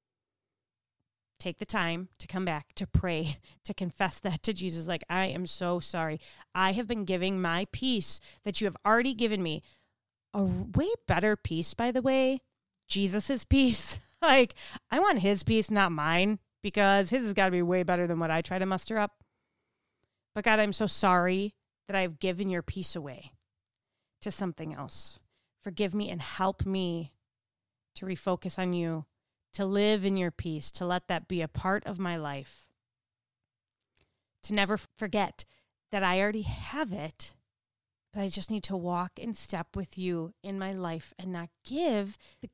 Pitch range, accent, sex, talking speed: 145-205 Hz, American, female, 175 wpm